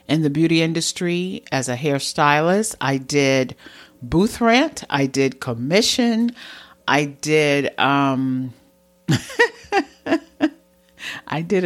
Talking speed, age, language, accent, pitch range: 100 wpm, 50-69, English, American, 140-205 Hz